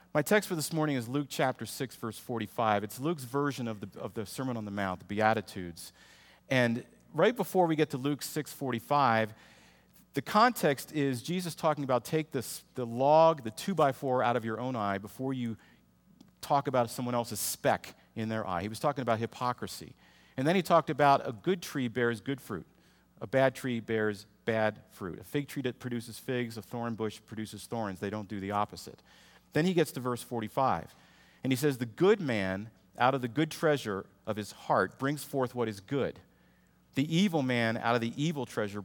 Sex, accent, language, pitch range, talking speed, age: male, American, English, 110-145 Hz, 200 wpm, 40-59